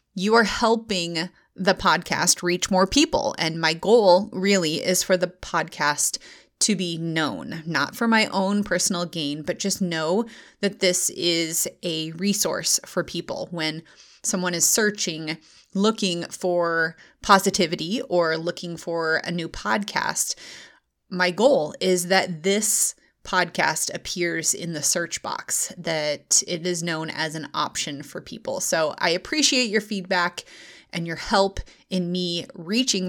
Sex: female